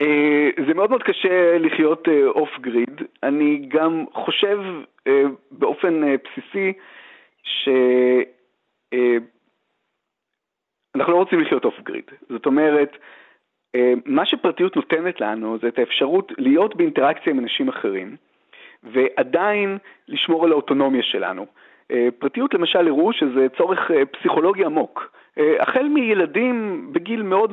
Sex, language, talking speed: male, Hebrew, 105 wpm